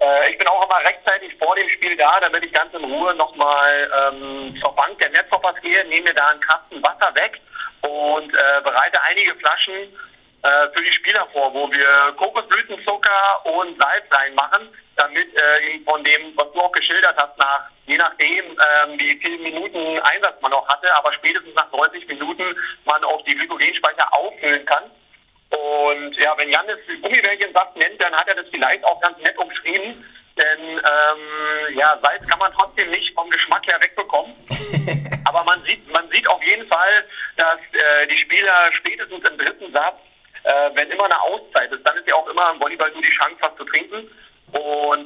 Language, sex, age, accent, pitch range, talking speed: German, male, 40-59, German, 145-180 Hz, 185 wpm